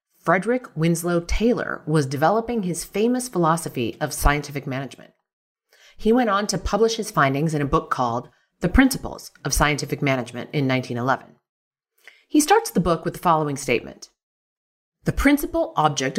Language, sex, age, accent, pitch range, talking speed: English, female, 30-49, American, 150-220 Hz, 150 wpm